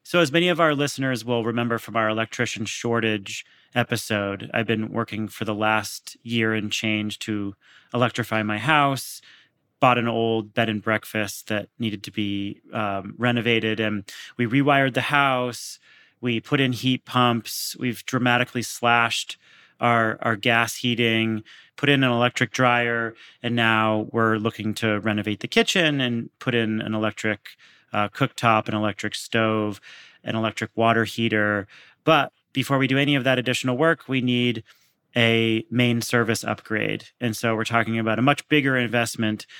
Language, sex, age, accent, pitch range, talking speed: English, male, 30-49, American, 110-130 Hz, 160 wpm